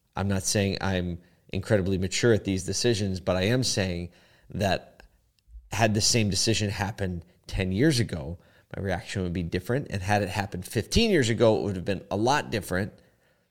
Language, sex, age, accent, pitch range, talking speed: English, male, 30-49, American, 95-120 Hz, 180 wpm